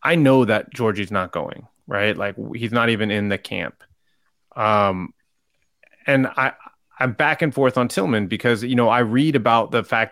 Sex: male